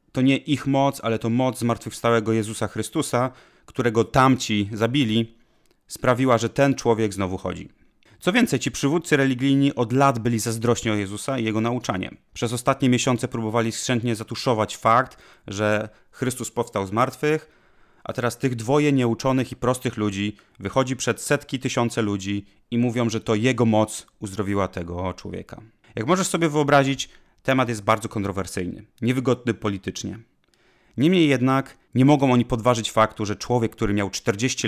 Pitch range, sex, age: 110-130 Hz, male, 30-49